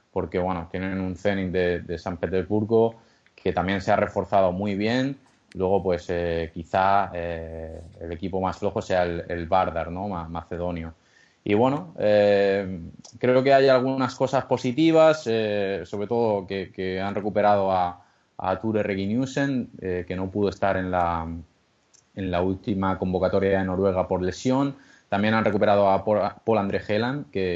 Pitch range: 90-115 Hz